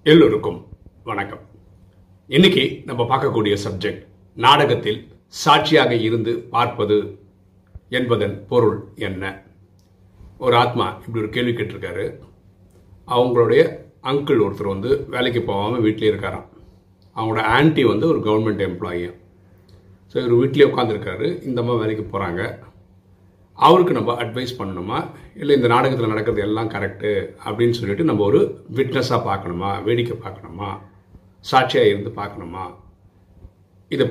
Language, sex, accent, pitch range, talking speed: Tamil, male, native, 95-120 Hz, 110 wpm